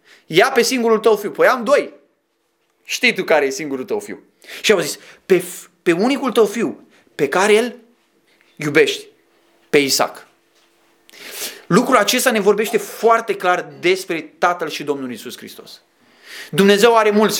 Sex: male